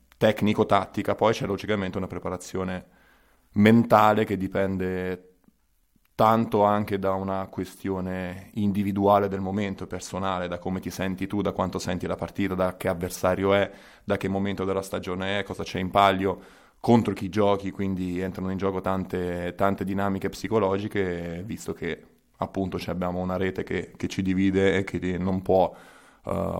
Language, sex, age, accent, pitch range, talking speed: Italian, male, 20-39, native, 90-100 Hz, 155 wpm